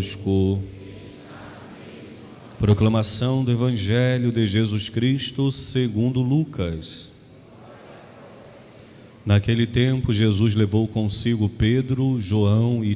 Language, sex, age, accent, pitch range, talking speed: Portuguese, male, 40-59, Brazilian, 105-130 Hz, 75 wpm